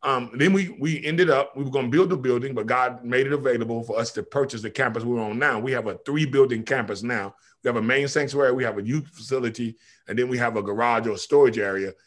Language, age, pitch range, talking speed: English, 30-49, 120-150 Hz, 260 wpm